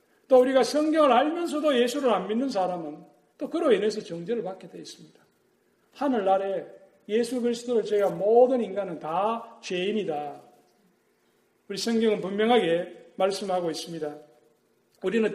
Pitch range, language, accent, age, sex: 165-240 Hz, Korean, native, 40-59, male